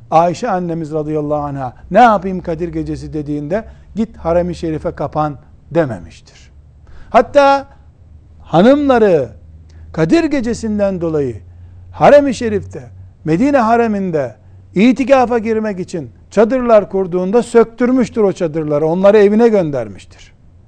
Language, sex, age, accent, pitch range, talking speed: Turkish, male, 60-79, native, 120-175 Hz, 100 wpm